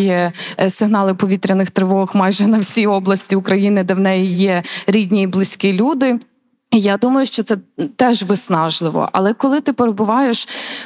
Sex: female